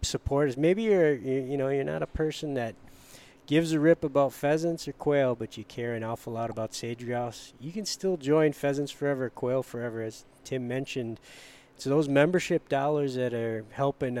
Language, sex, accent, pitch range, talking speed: English, male, American, 120-150 Hz, 185 wpm